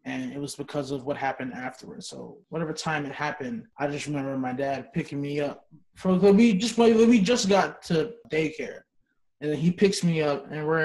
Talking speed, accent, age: 210 wpm, American, 20-39